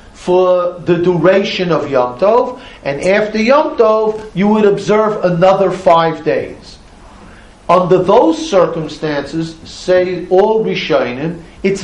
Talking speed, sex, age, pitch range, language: 115 wpm, male, 50-69, 165-215 Hz, English